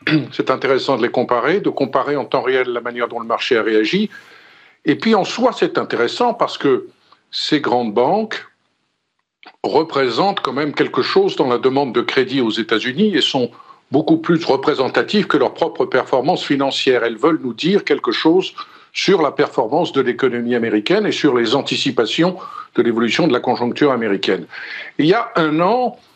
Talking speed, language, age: 175 wpm, French, 50-69